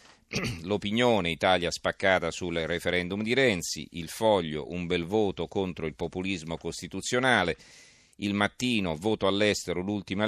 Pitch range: 80-100 Hz